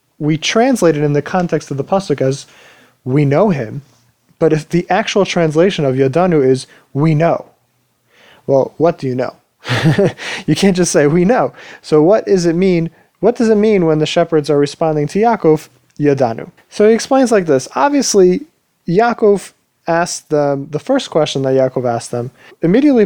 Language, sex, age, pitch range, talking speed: English, male, 30-49, 135-185 Hz, 175 wpm